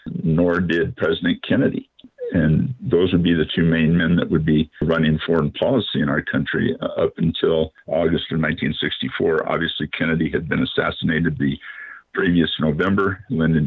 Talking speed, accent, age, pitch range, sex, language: 155 wpm, American, 50-69, 80-90 Hz, male, English